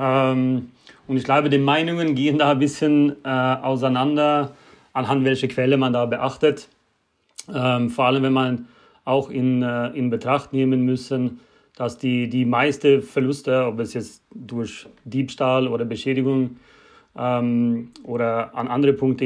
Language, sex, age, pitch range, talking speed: German, male, 30-49, 125-140 Hz, 145 wpm